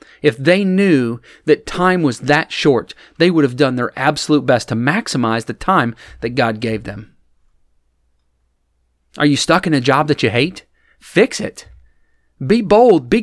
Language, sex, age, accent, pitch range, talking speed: English, male, 40-59, American, 125-190 Hz, 170 wpm